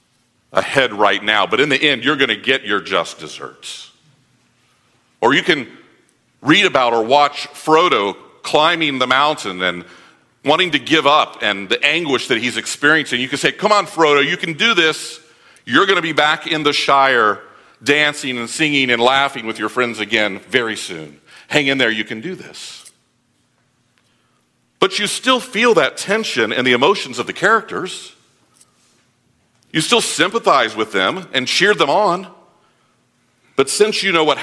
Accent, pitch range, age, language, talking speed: American, 125-175 Hz, 50-69, English, 170 wpm